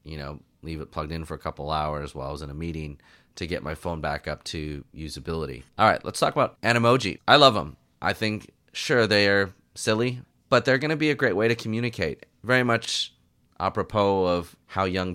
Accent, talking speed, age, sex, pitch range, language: American, 220 wpm, 30-49, male, 80-105 Hz, English